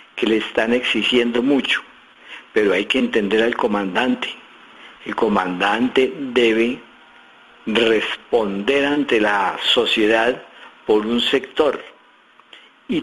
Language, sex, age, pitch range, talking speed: Spanish, male, 50-69, 115-150 Hz, 100 wpm